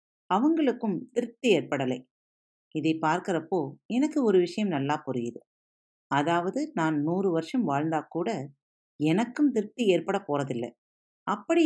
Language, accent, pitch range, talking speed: Tamil, native, 150-235 Hz, 105 wpm